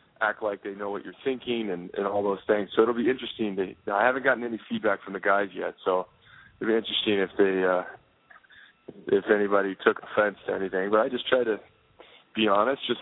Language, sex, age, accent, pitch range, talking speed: English, male, 20-39, American, 95-105 Hz, 215 wpm